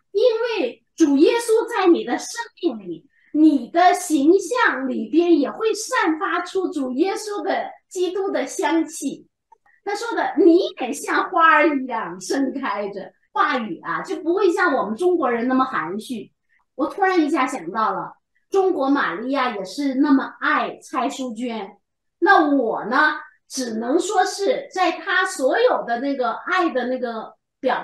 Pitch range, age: 255-375 Hz, 30-49